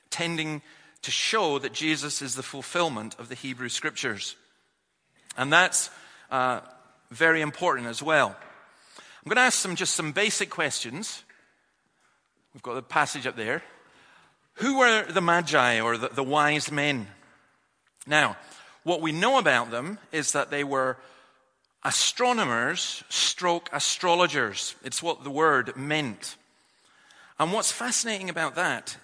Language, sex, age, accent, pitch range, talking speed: English, male, 40-59, British, 135-180 Hz, 135 wpm